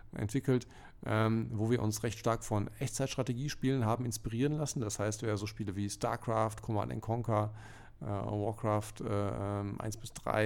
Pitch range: 110-125 Hz